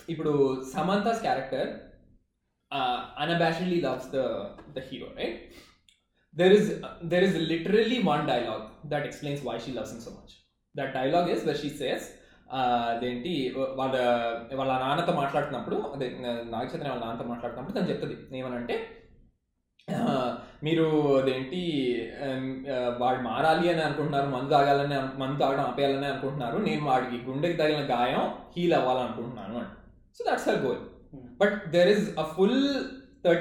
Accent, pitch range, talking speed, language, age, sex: native, 135-175 Hz, 130 wpm, Telugu, 20-39, male